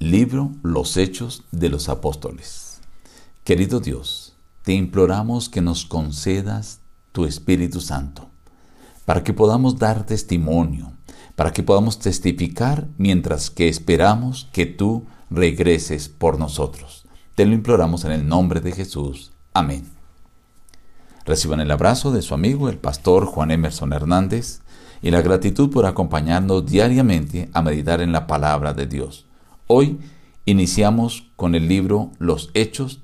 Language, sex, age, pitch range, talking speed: Spanish, male, 50-69, 80-110 Hz, 135 wpm